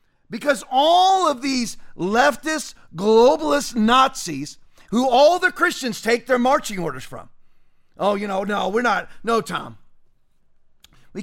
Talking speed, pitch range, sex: 135 wpm, 210-290 Hz, male